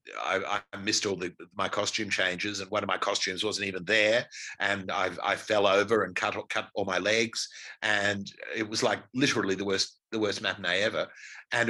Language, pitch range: English, 105-135 Hz